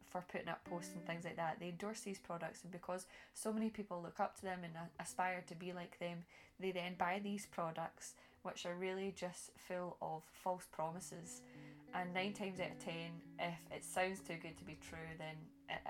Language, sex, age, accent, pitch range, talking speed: English, female, 10-29, British, 165-185 Hz, 210 wpm